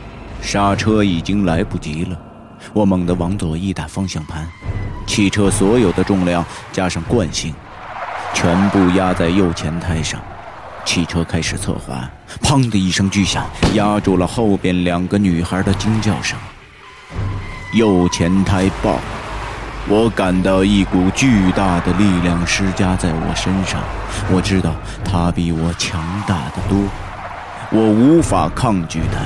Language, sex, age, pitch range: Chinese, male, 30-49, 90-105 Hz